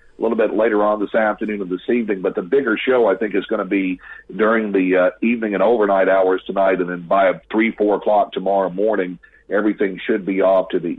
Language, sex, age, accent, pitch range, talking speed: English, male, 40-59, American, 95-110 Hz, 230 wpm